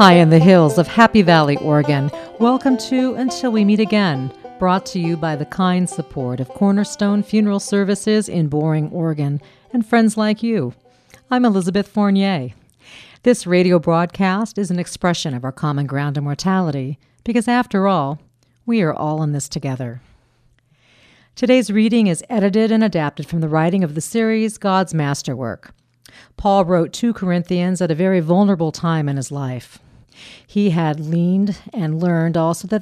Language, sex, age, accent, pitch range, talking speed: English, female, 50-69, American, 145-200 Hz, 165 wpm